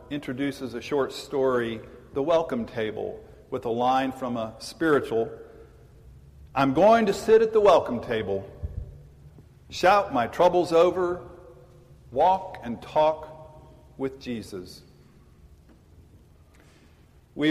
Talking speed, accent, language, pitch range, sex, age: 105 wpm, American, English, 120-165 Hz, male, 50-69